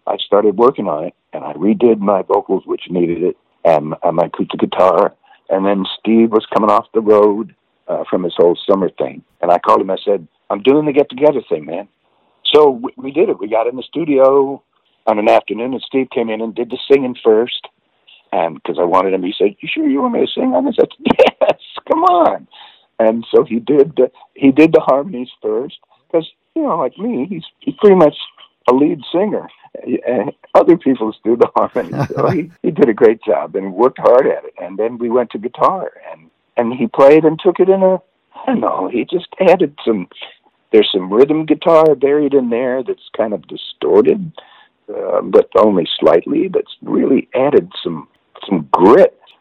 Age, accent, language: 60-79, American, English